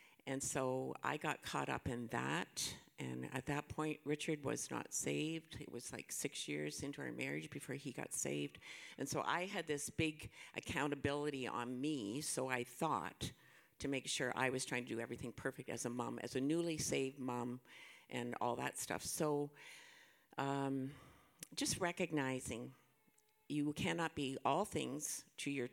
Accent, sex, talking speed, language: American, female, 170 wpm, English